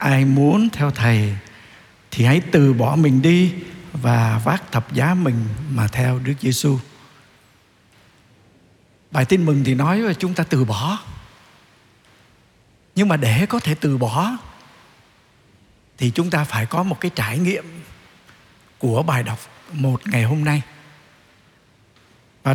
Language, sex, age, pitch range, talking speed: Vietnamese, male, 60-79, 125-185 Hz, 140 wpm